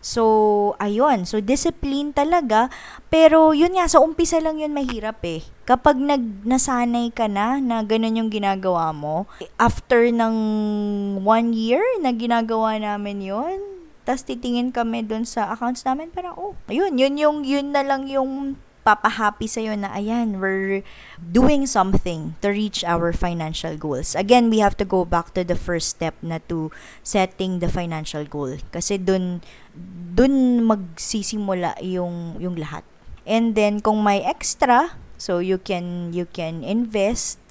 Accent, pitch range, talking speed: native, 175-250 Hz, 150 wpm